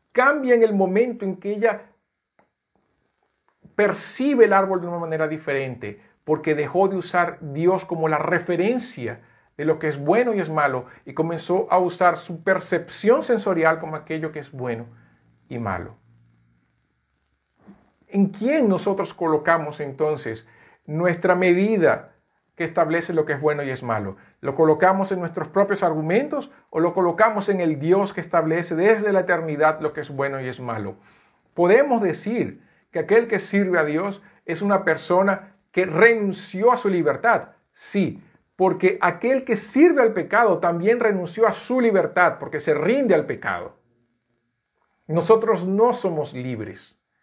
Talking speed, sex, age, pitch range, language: 155 wpm, male, 50-69, 150-200 Hz, Portuguese